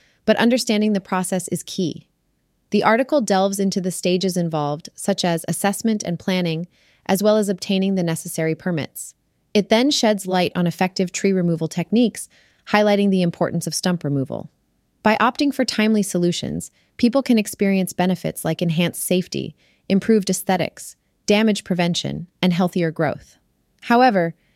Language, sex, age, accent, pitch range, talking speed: English, female, 30-49, American, 160-200 Hz, 145 wpm